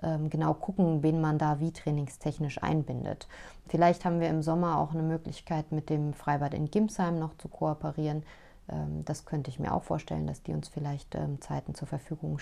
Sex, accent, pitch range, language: female, German, 155-180 Hz, German